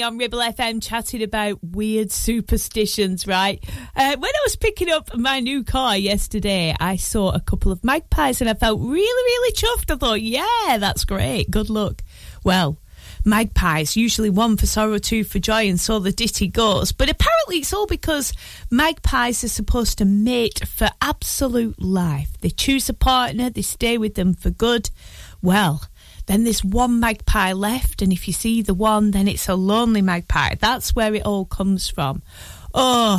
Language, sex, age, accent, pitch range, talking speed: English, female, 30-49, British, 190-250 Hz, 175 wpm